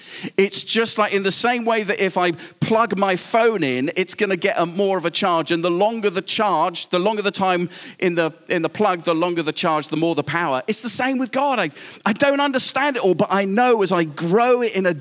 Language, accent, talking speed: English, British, 260 wpm